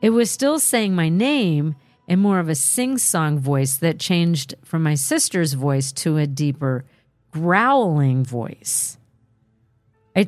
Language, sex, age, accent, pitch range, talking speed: English, female, 40-59, American, 140-200 Hz, 140 wpm